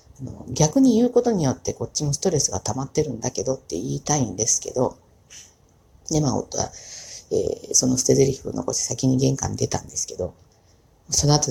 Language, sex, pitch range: Japanese, female, 120-180 Hz